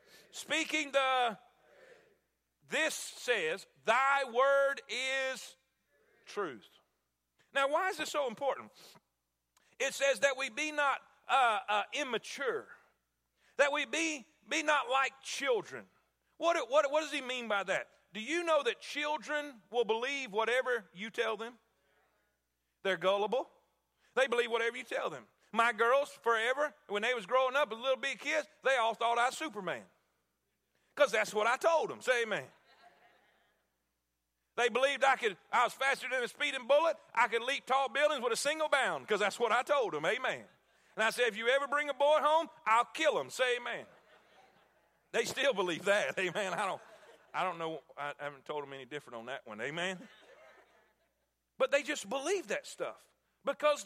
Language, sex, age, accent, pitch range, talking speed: English, male, 40-59, American, 225-295 Hz, 170 wpm